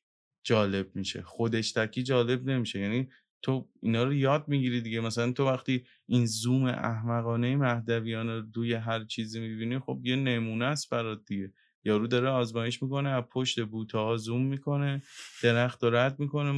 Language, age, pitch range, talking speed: Persian, 20-39, 115-135 Hz, 155 wpm